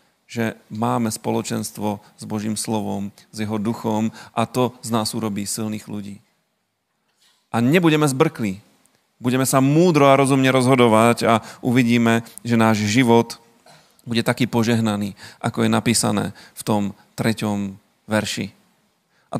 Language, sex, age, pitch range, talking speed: Slovak, male, 40-59, 110-135 Hz, 125 wpm